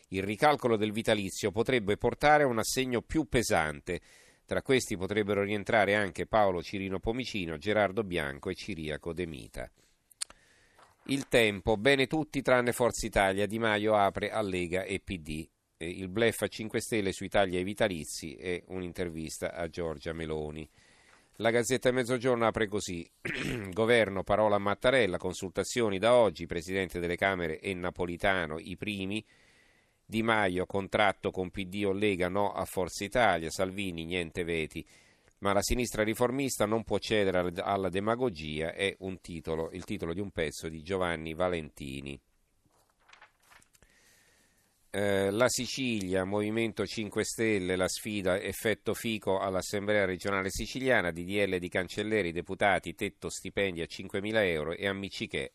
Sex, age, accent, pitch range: male, 40-59, native, 90-110 Hz